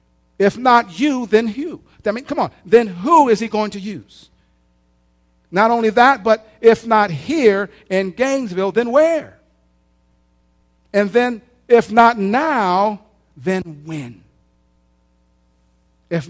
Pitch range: 145-235 Hz